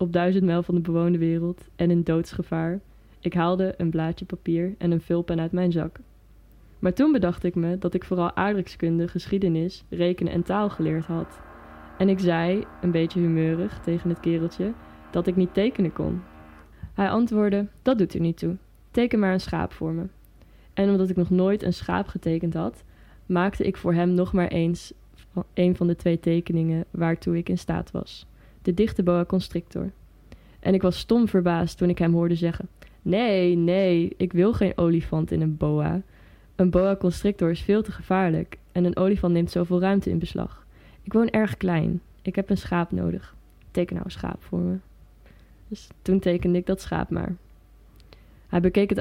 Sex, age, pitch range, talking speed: female, 20-39, 165-190 Hz, 185 wpm